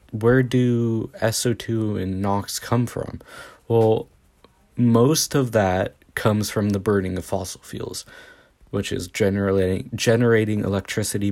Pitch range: 95-115 Hz